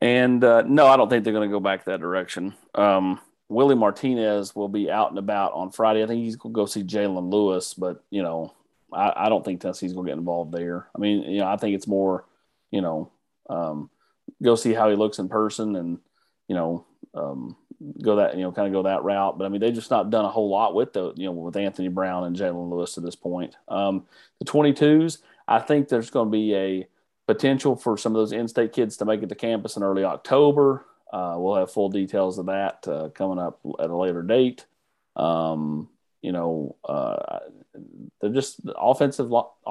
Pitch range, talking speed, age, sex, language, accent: 95-115 Hz, 220 wpm, 30-49, male, English, American